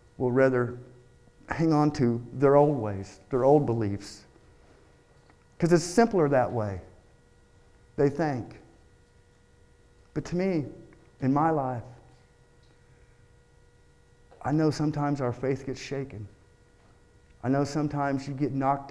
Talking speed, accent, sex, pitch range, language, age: 115 wpm, American, male, 115-145 Hz, English, 50-69